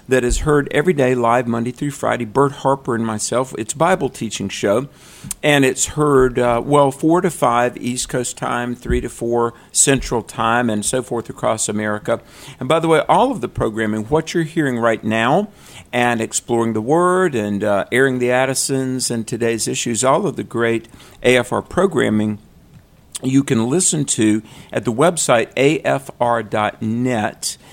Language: English